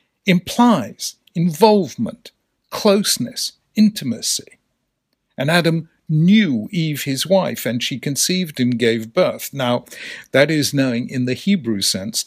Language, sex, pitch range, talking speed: English, male, 120-165 Hz, 115 wpm